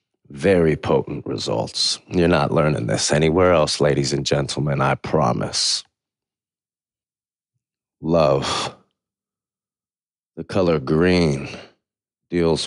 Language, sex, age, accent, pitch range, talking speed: English, male, 30-49, American, 85-100 Hz, 90 wpm